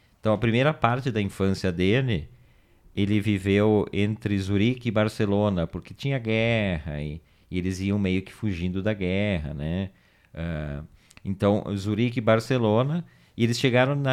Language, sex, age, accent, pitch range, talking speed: Portuguese, male, 40-59, Brazilian, 90-115 Hz, 145 wpm